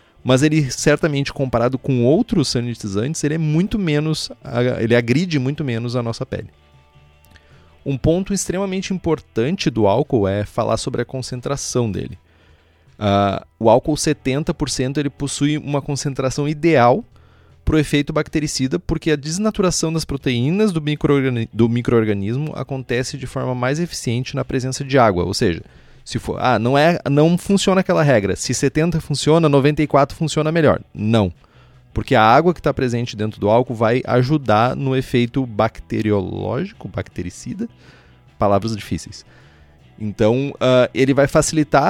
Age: 30-49